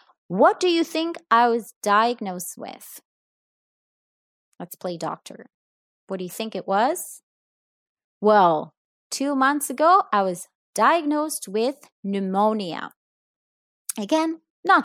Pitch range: 200-285 Hz